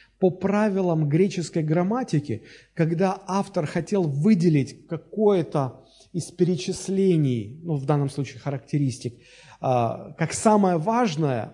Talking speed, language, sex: 100 wpm, Russian, male